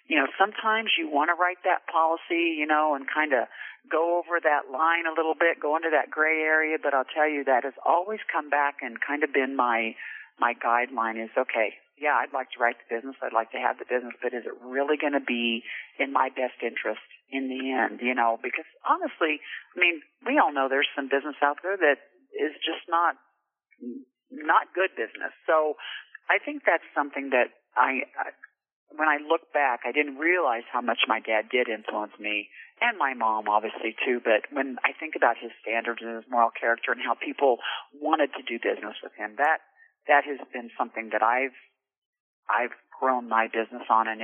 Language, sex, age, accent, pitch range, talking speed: English, male, 50-69, American, 120-155 Hz, 205 wpm